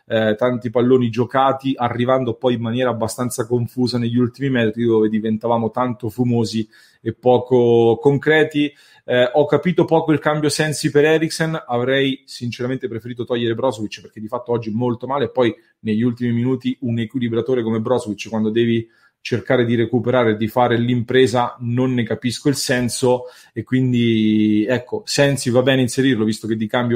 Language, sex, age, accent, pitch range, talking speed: English, male, 30-49, Italian, 115-130 Hz, 160 wpm